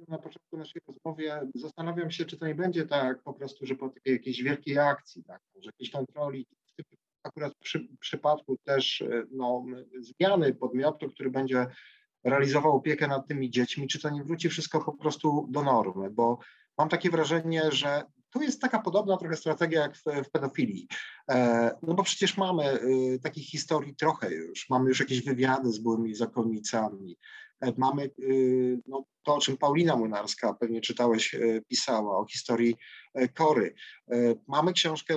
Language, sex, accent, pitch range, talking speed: Polish, male, native, 125-160 Hz, 160 wpm